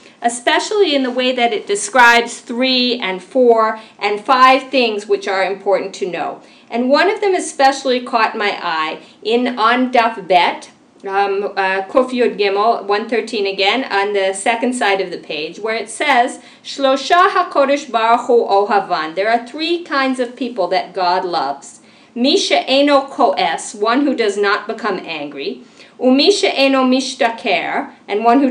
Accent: American